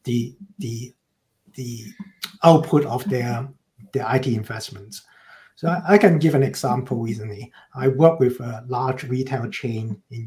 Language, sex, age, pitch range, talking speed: English, male, 50-69, 125-160 Hz, 140 wpm